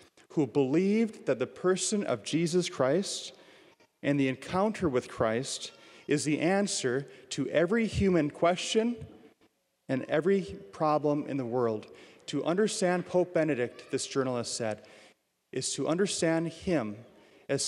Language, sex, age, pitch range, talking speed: English, male, 40-59, 130-185 Hz, 130 wpm